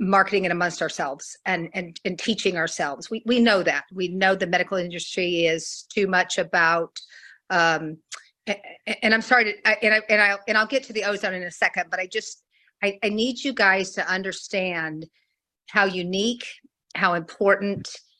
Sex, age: female, 50-69